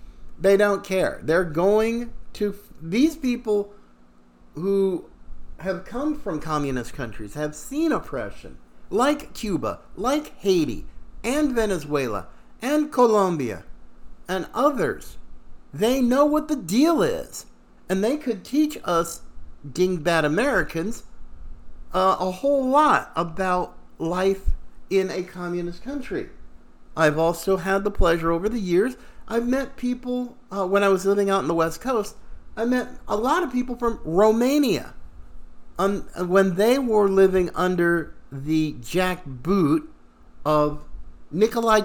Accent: American